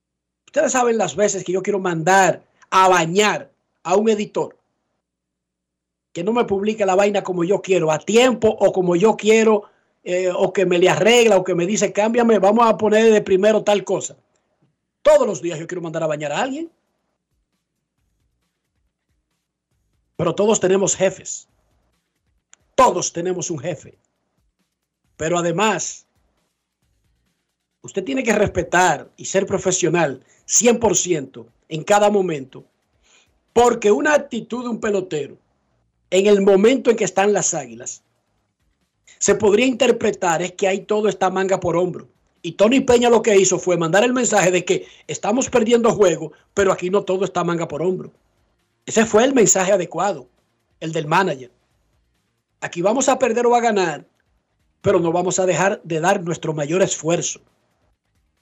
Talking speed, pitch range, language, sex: 155 wpm, 170-210 Hz, Spanish, male